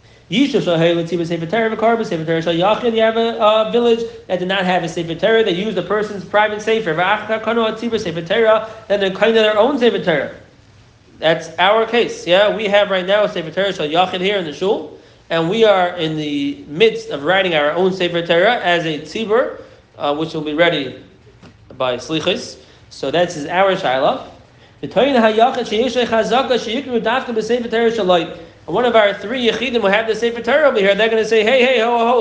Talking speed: 215 wpm